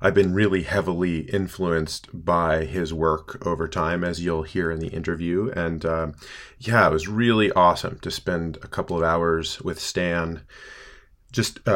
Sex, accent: male, American